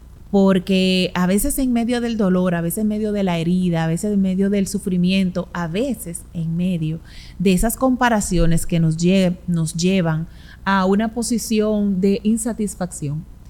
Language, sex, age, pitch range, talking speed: Spanish, female, 30-49, 165-200 Hz, 160 wpm